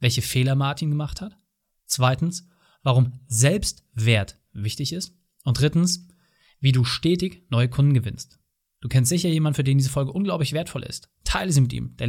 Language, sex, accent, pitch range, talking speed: German, male, German, 130-170 Hz, 170 wpm